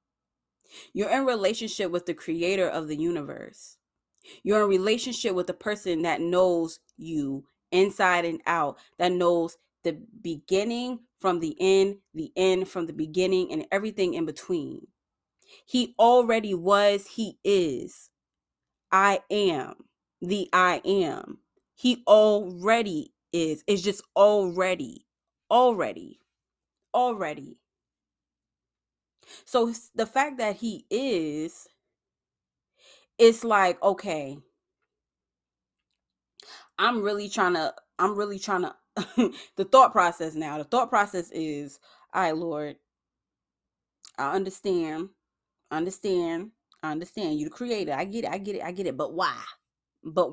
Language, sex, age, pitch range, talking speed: English, female, 20-39, 175-235 Hz, 120 wpm